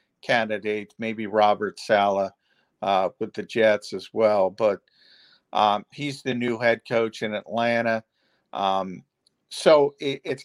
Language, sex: English, male